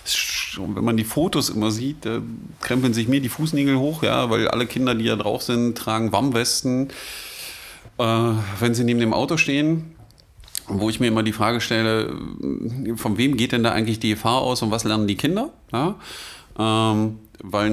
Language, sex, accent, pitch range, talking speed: German, male, German, 100-120 Hz, 185 wpm